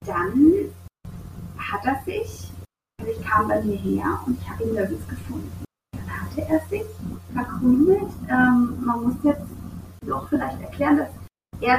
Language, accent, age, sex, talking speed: German, German, 30-49, female, 150 wpm